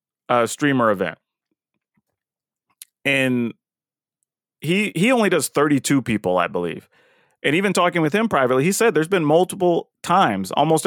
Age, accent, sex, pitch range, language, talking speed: 30-49, American, male, 125-170 Hz, English, 140 wpm